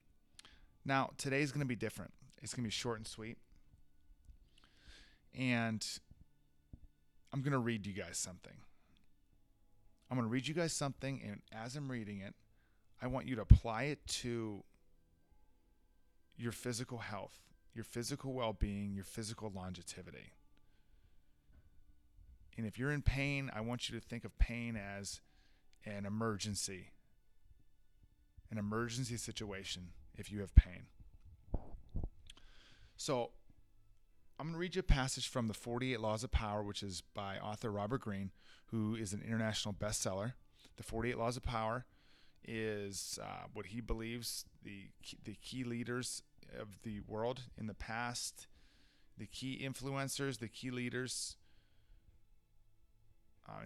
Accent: American